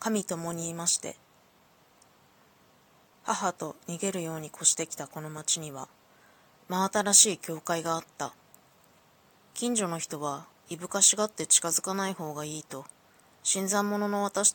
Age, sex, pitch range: 20-39, female, 155-185 Hz